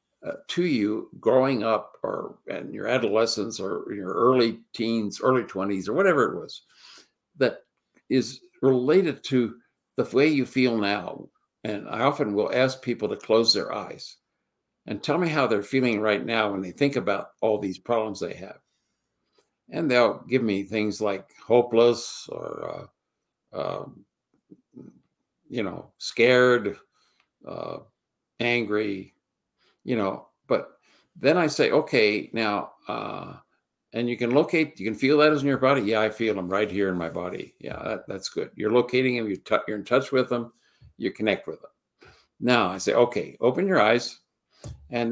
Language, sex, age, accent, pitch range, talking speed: English, male, 60-79, American, 105-130 Hz, 165 wpm